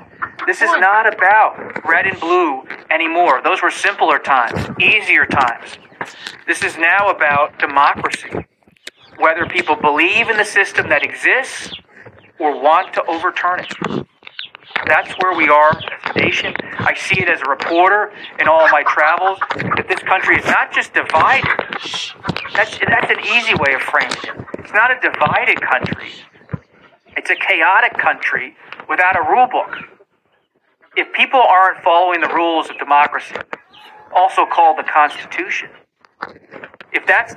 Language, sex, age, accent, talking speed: English, male, 40-59, American, 150 wpm